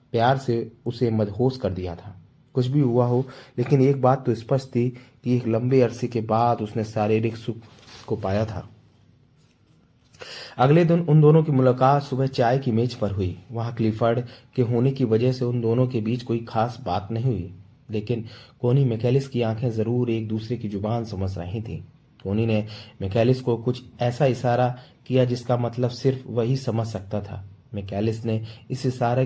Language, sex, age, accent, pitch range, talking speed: Hindi, male, 30-49, native, 105-125 Hz, 175 wpm